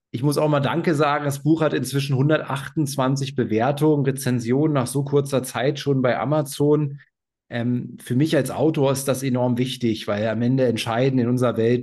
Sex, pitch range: male, 125-155 Hz